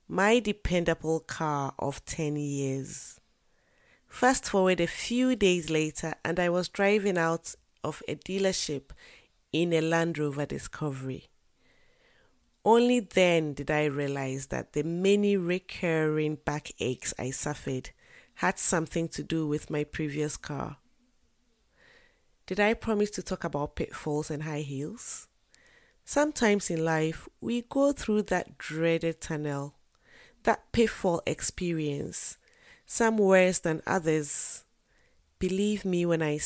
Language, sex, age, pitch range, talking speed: English, female, 30-49, 150-200 Hz, 125 wpm